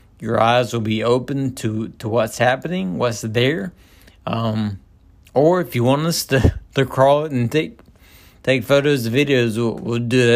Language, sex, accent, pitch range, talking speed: English, male, American, 110-130 Hz, 180 wpm